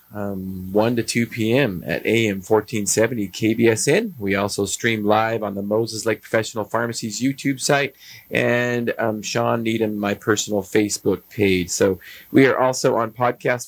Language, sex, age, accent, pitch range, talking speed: English, male, 30-49, American, 100-120 Hz, 155 wpm